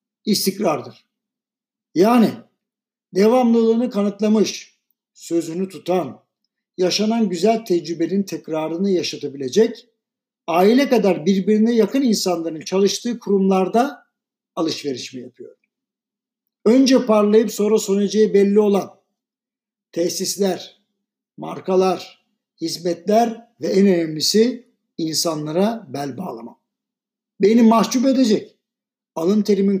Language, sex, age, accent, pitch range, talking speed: Turkish, male, 60-79, native, 185-235 Hz, 80 wpm